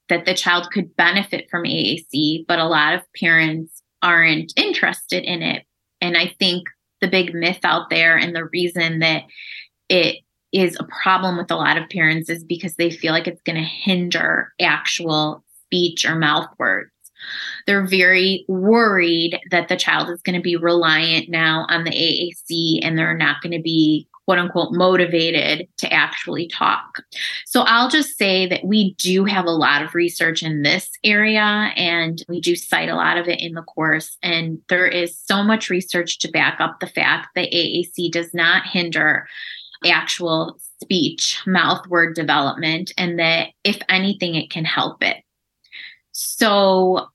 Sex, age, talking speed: female, 20-39, 170 wpm